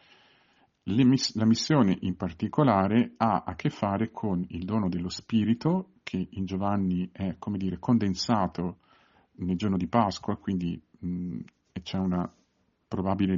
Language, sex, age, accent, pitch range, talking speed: Italian, male, 50-69, native, 90-110 Hz, 125 wpm